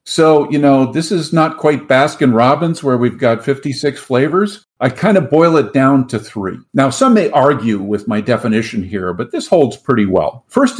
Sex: male